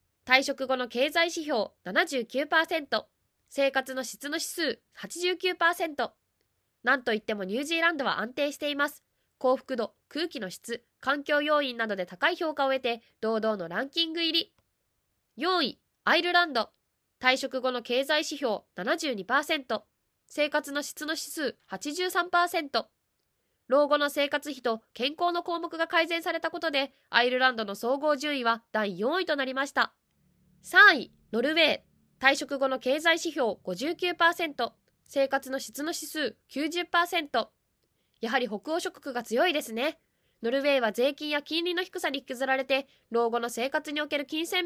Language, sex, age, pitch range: Japanese, female, 20-39, 245-320 Hz